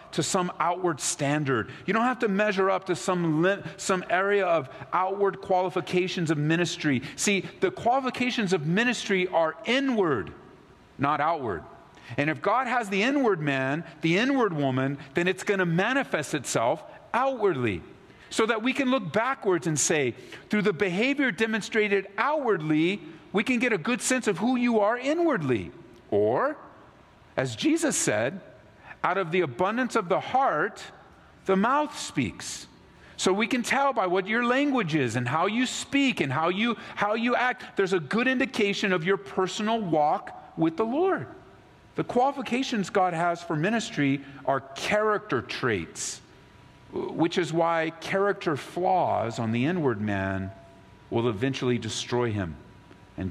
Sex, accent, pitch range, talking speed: male, American, 140-225 Hz, 150 wpm